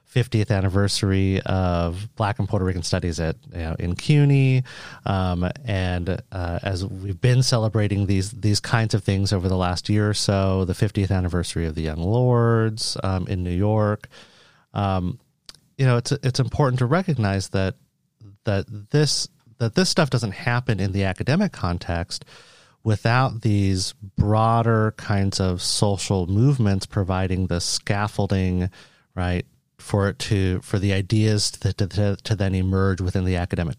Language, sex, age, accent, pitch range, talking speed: English, male, 30-49, American, 95-125 Hz, 155 wpm